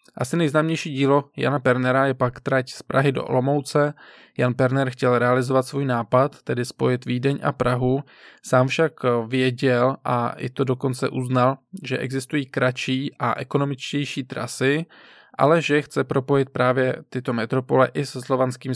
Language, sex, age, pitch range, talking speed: Czech, male, 20-39, 125-135 Hz, 150 wpm